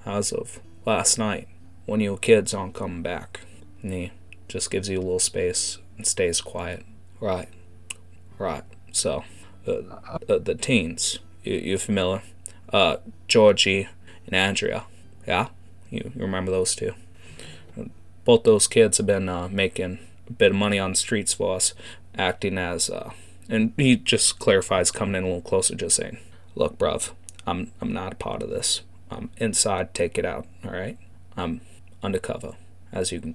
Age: 20-39